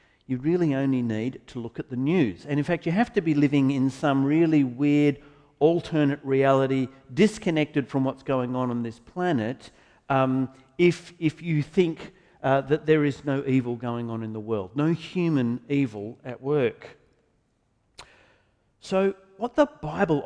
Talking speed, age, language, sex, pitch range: 165 wpm, 50-69, English, male, 120-170 Hz